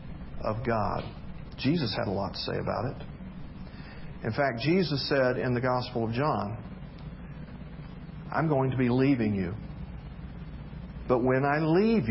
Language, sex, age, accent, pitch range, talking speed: English, male, 50-69, American, 125-180 Hz, 145 wpm